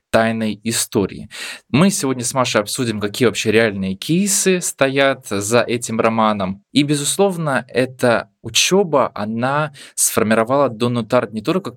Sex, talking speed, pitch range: male, 130 wpm, 105-135 Hz